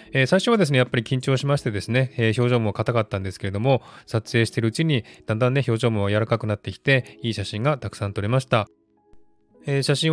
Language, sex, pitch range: Japanese, male, 105-135 Hz